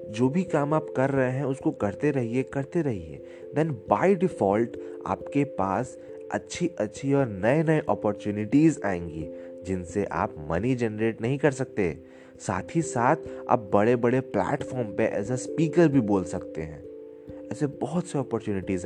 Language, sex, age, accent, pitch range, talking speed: Hindi, male, 20-39, native, 95-130 Hz, 160 wpm